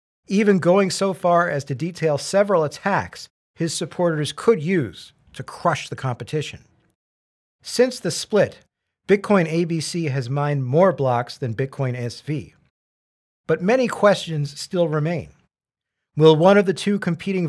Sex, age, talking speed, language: male, 40-59, 135 wpm, English